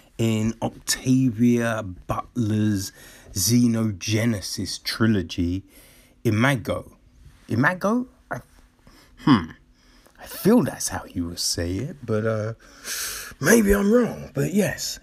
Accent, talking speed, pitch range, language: British, 90 wpm, 100-130 Hz, English